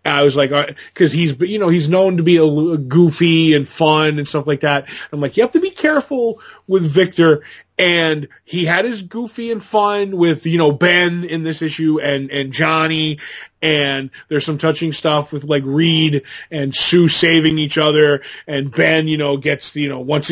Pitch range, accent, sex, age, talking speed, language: 145-170 Hz, American, male, 20-39, 195 wpm, English